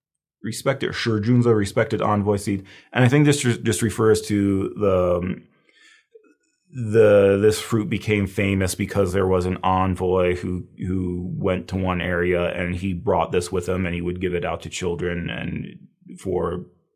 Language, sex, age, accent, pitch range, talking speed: English, male, 30-49, American, 90-105 Hz, 165 wpm